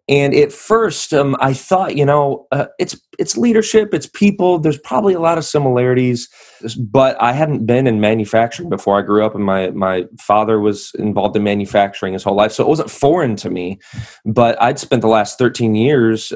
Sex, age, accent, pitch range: male, 30-49, American, 110-140 Hz